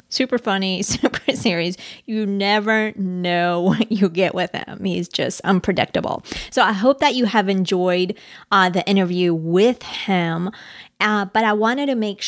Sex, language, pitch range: female, English, 180-220 Hz